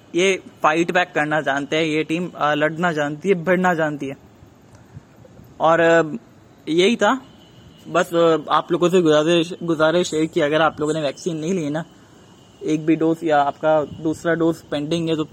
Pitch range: 150-175 Hz